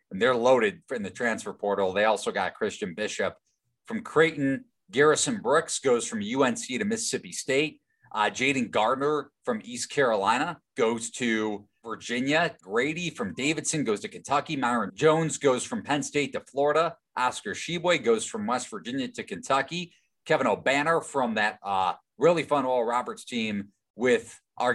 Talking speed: 160 wpm